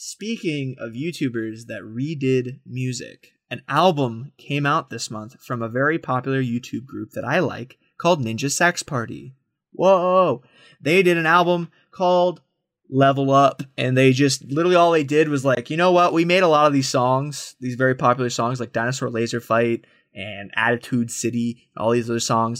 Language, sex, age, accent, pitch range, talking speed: English, male, 20-39, American, 125-175 Hz, 180 wpm